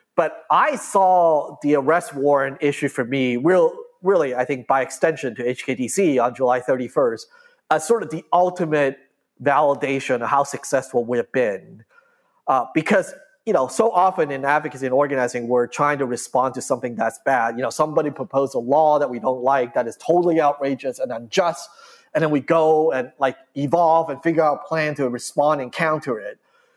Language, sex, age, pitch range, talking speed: English, male, 30-49, 135-185 Hz, 185 wpm